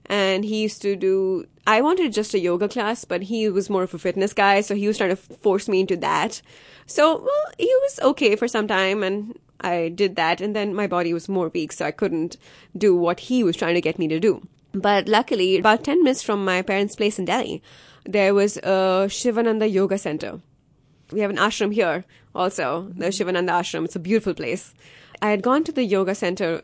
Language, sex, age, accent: English, female, 20-39, Indian